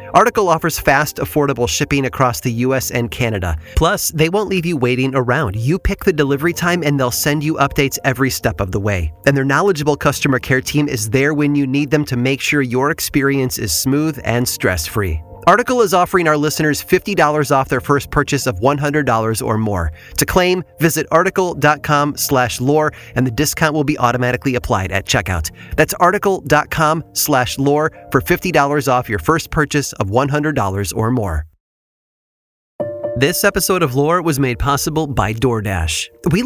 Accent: American